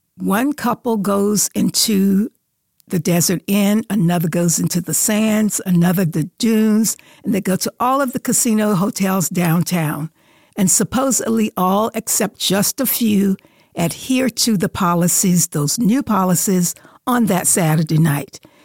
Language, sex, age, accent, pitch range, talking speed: English, female, 60-79, American, 175-220 Hz, 140 wpm